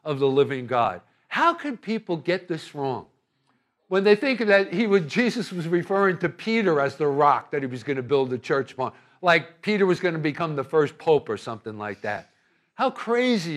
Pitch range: 150-215 Hz